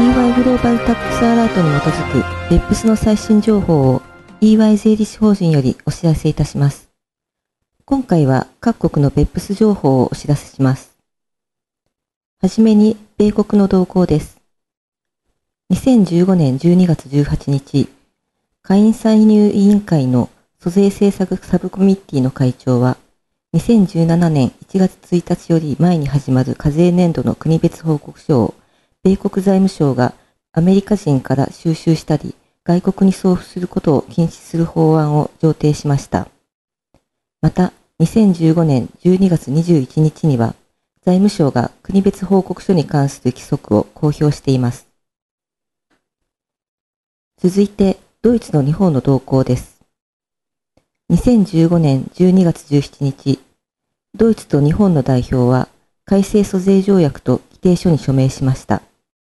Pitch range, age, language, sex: 140-195 Hz, 40-59, Japanese, female